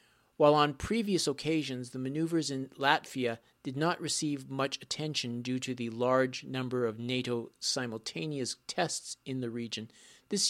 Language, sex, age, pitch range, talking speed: English, male, 40-59, 125-160 Hz, 150 wpm